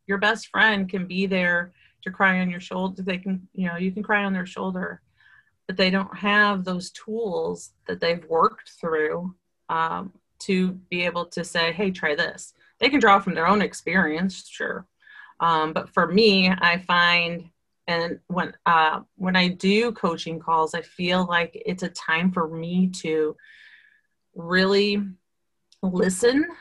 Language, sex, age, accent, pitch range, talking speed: English, female, 30-49, American, 170-195 Hz, 165 wpm